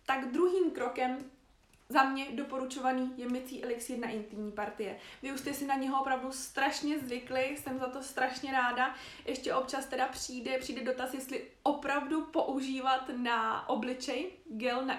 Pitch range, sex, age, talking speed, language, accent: 230-270 Hz, female, 20-39, 155 wpm, Czech, native